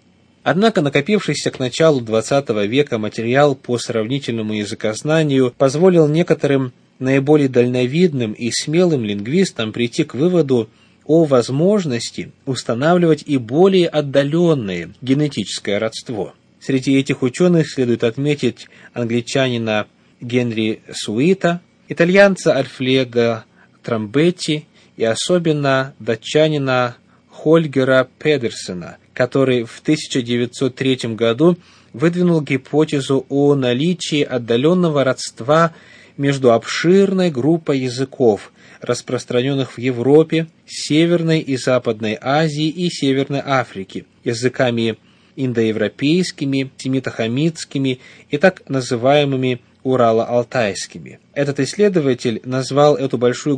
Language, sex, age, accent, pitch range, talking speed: Russian, male, 20-39, native, 120-155 Hz, 90 wpm